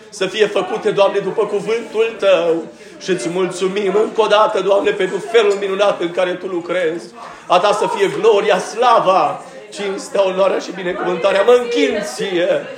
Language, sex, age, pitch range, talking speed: Romanian, male, 40-59, 190-255 Hz, 150 wpm